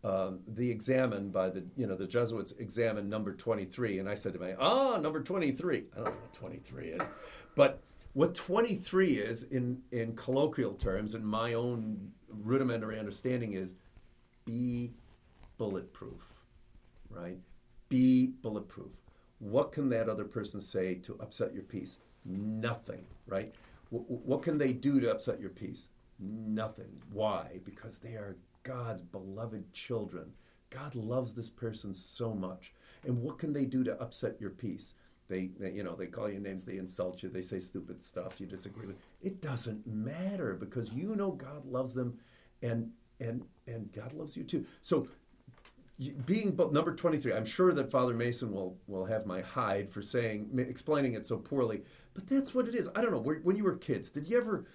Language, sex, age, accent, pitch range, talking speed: English, male, 50-69, American, 100-130 Hz, 175 wpm